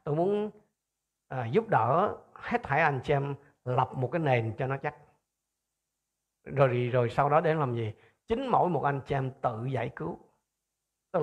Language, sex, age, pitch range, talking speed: Vietnamese, male, 50-69, 135-175 Hz, 185 wpm